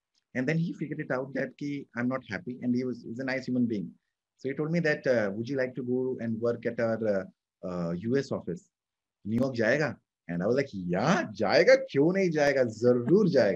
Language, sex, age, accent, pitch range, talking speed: English, male, 20-39, Indian, 115-170 Hz, 210 wpm